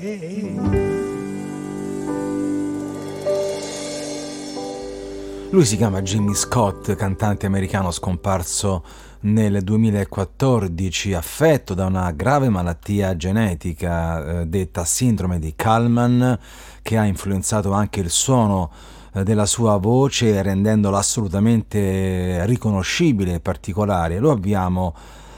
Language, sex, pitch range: Italian, male, 90-110 Hz